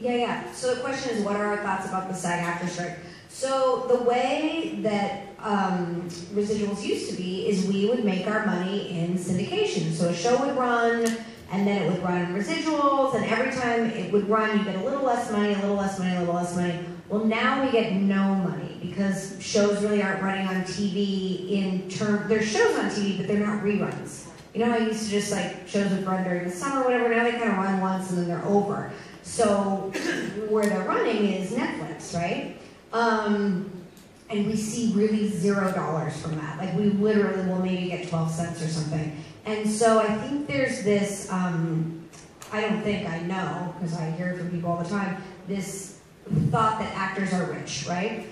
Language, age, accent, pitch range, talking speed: English, 30-49, American, 180-220 Hz, 210 wpm